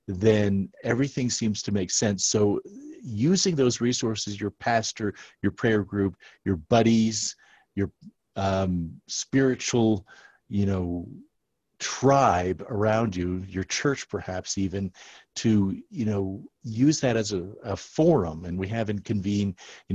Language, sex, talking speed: English, male, 125 wpm